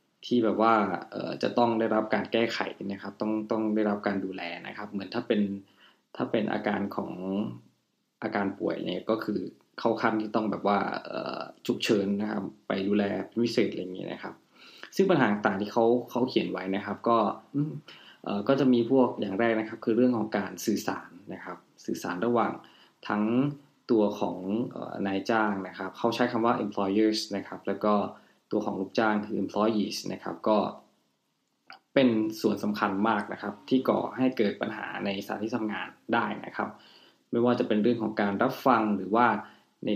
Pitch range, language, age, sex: 100-115 Hz, Thai, 20-39, male